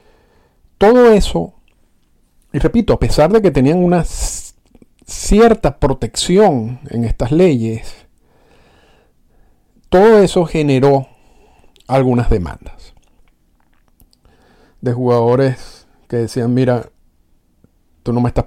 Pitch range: 110-130 Hz